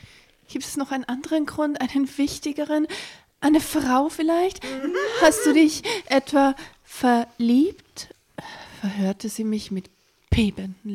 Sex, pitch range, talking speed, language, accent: female, 200-280 Hz, 115 wpm, German, German